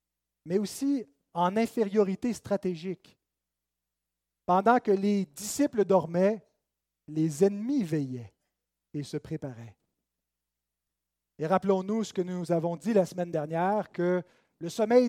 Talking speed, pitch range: 115 wpm, 150-205 Hz